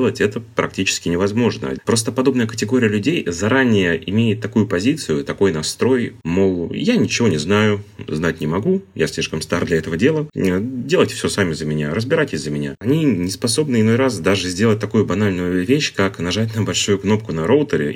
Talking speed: 175 wpm